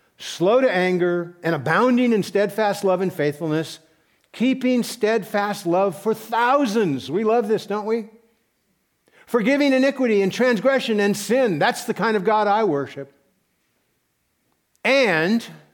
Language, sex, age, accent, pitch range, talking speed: English, male, 60-79, American, 135-200 Hz, 130 wpm